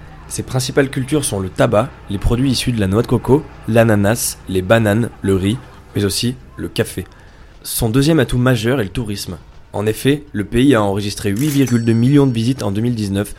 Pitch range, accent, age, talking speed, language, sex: 95-120 Hz, French, 20-39, 190 wpm, French, male